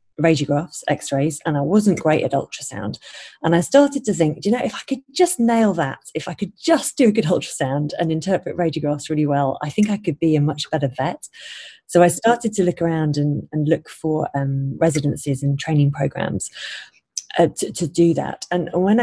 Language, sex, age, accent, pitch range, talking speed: English, female, 30-49, British, 150-185 Hz, 205 wpm